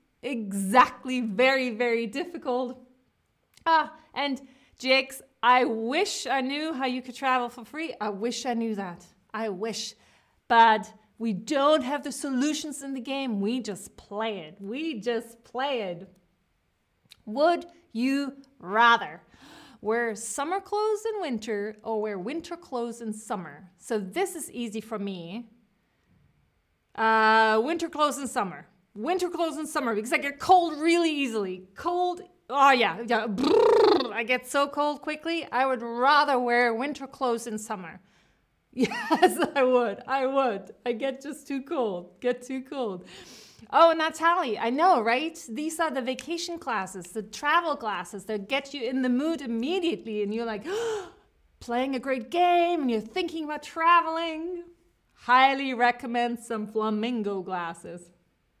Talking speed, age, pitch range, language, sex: 145 wpm, 30-49, 220-305 Hz, English, female